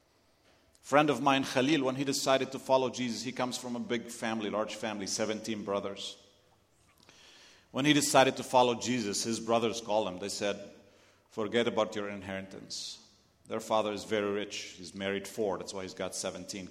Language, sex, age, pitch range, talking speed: English, male, 40-59, 95-125 Hz, 175 wpm